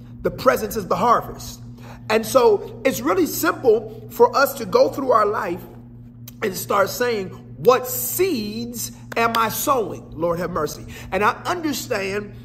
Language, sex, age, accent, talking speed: English, male, 40-59, American, 150 wpm